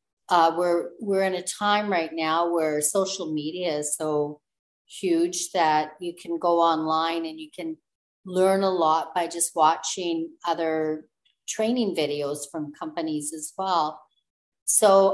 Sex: female